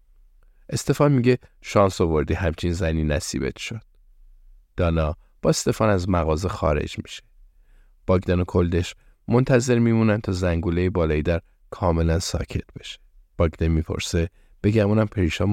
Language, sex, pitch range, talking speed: Persian, male, 85-110 Hz, 125 wpm